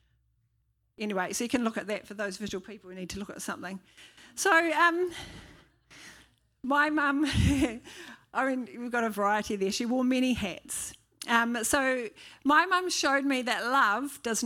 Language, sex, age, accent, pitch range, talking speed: English, female, 40-59, Australian, 215-260 Hz, 170 wpm